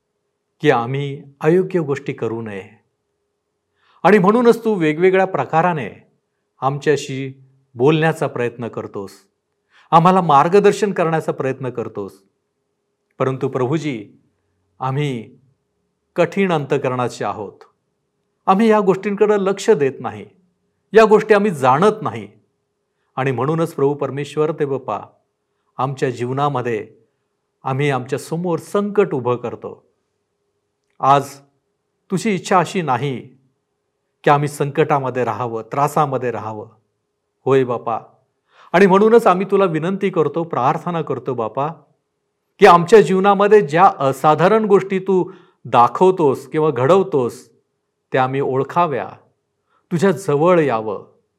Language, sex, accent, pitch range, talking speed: Marathi, male, native, 130-185 Hz, 105 wpm